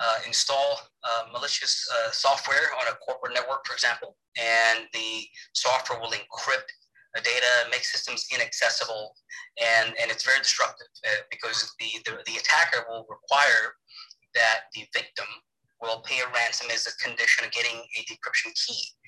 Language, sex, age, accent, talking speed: English, male, 30-49, American, 155 wpm